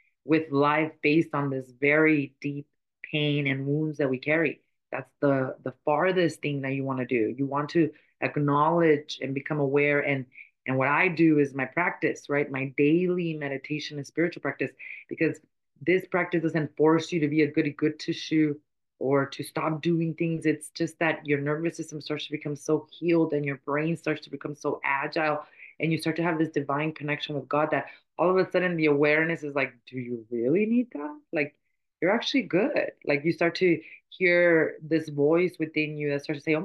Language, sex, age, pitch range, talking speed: English, female, 30-49, 145-165 Hz, 205 wpm